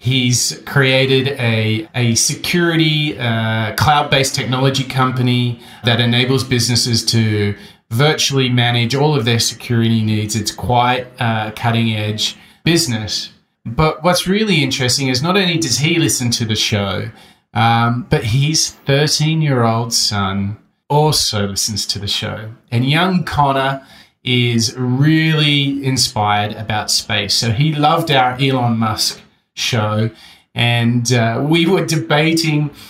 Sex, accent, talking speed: male, Australian, 125 wpm